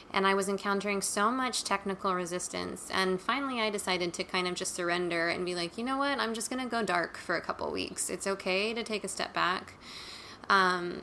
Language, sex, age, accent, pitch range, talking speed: English, female, 20-39, American, 185-210 Hz, 225 wpm